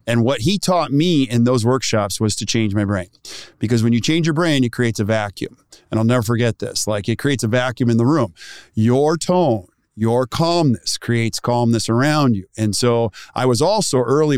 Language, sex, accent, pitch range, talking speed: English, male, American, 115-140 Hz, 210 wpm